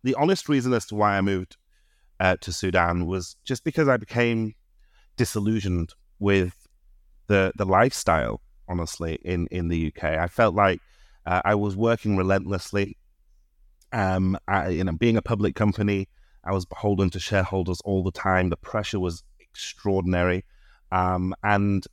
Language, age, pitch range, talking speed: English, 30-49, 85-105 Hz, 150 wpm